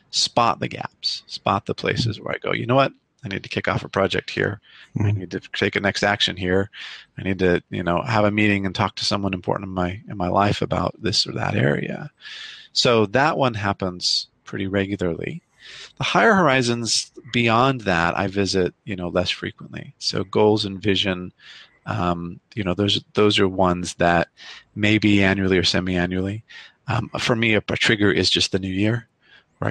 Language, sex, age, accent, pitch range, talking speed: English, male, 30-49, American, 95-115 Hz, 195 wpm